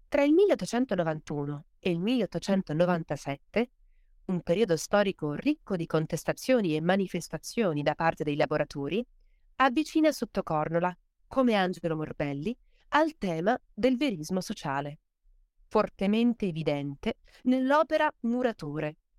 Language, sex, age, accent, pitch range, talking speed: Italian, female, 30-49, native, 160-230 Hz, 105 wpm